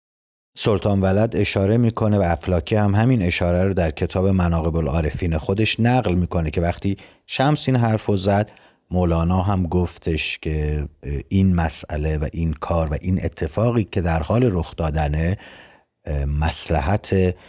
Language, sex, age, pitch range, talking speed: Persian, male, 50-69, 85-105 Hz, 140 wpm